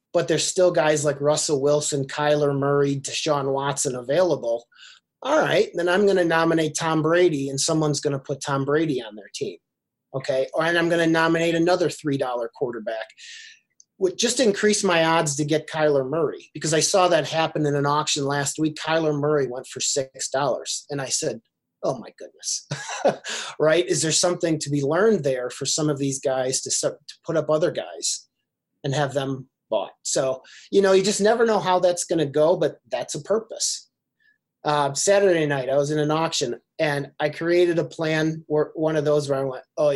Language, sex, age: English, male, 30-49